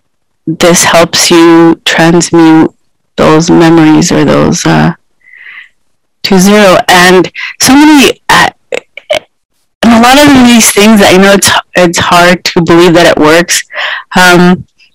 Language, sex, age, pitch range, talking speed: English, female, 30-49, 170-220 Hz, 125 wpm